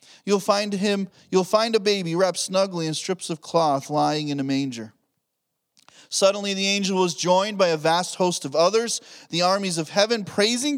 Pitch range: 155-205 Hz